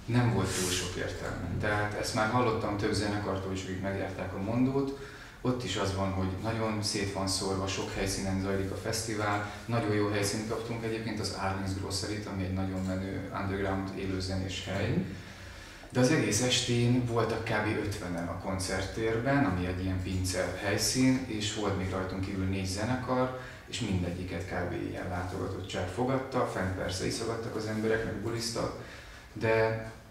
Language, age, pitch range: Hungarian, 30-49, 95-110 Hz